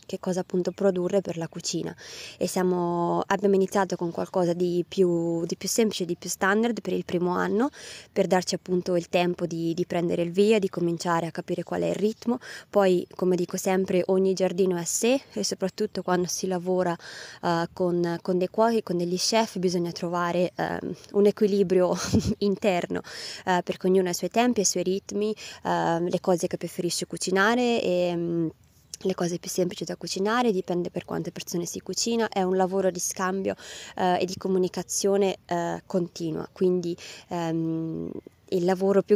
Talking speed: 175 wpm